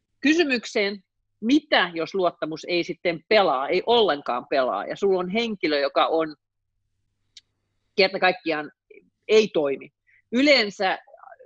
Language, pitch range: Finnish, 145-190 Hz